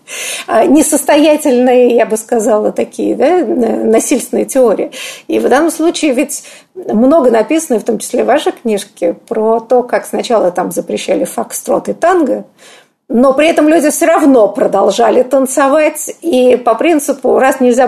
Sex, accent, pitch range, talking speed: female, native, 225-285 Hz, 145 wpm